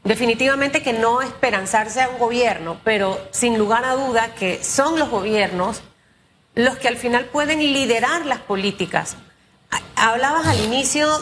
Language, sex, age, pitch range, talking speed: Spanish, female, 30-49, 205-270 Hz, 145 wpm